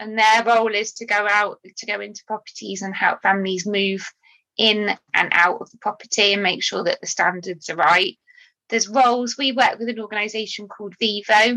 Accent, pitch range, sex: British, 180-225 Hz, female